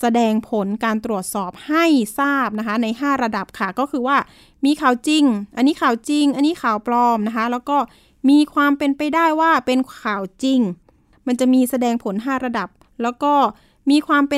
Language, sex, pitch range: Thai, female, 225-280 Hz